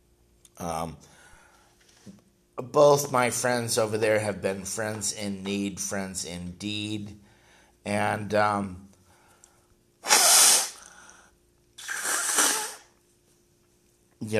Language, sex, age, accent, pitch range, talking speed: English, male, 50-69, American, 80-100 Hz, 70 wpm